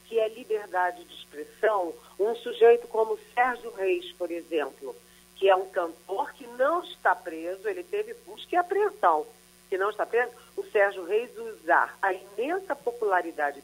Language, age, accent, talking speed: Portuguese, 40-59, Brazilian, 165 wpm